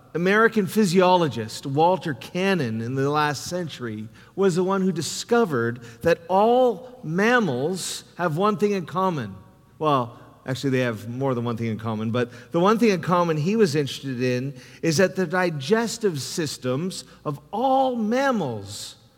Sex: male